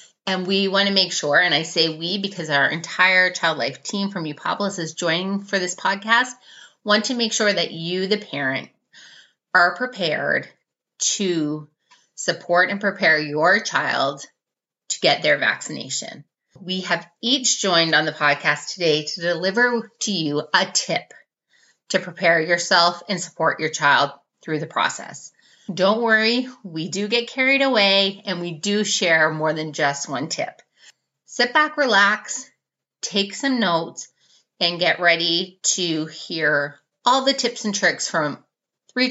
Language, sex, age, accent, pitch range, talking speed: English, female, 30-49, American, 160-205 Hz, 155 wpm